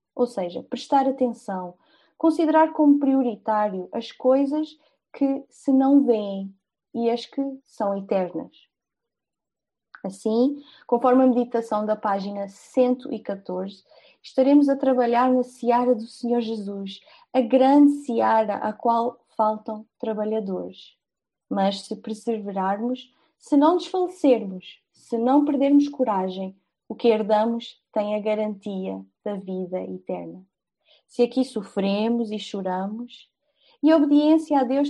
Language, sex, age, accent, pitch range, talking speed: Portuguese, female, 20-39, Brazilian, 210-275 Hz, 120 wpm